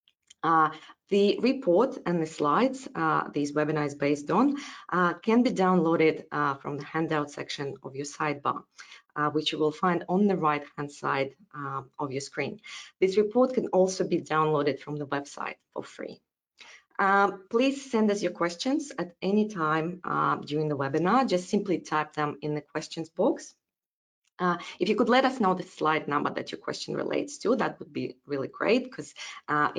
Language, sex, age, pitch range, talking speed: English, female, 20-39, 145-195 Hz, 185 wpm